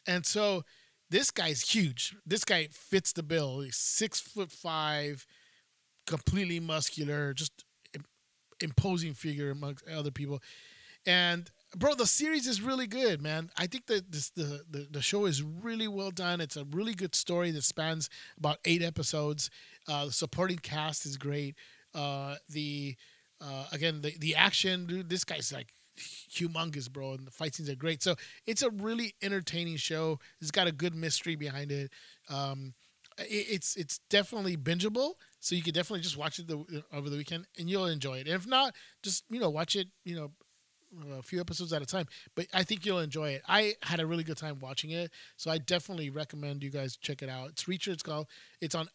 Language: English